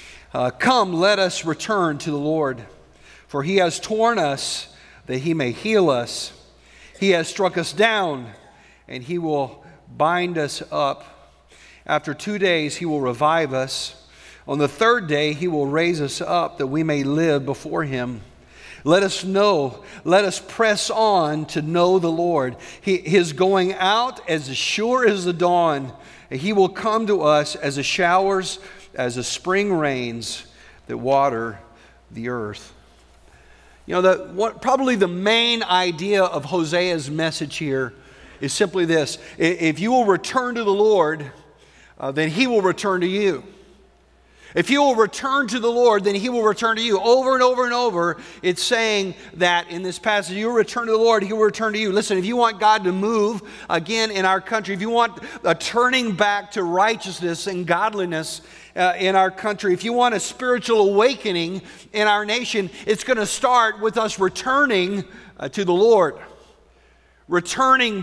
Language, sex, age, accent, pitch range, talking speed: English, male, 50-69, American, 155-220 Hz, 170 wpm